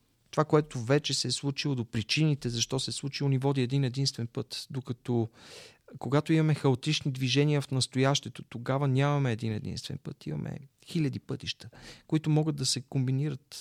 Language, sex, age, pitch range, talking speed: Bulgarian, male, 40-59, 120-140 Hz, 165 wpm